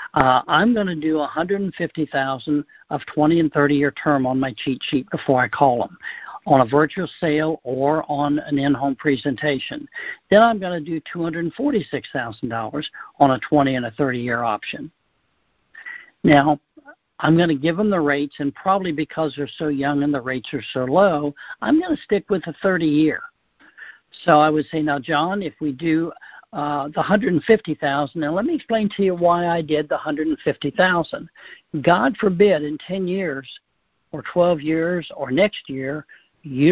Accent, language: American, English